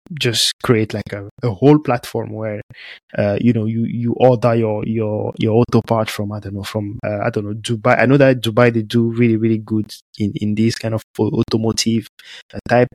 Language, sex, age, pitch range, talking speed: English, male, 20-39, 110-125 Hz, 210 wpm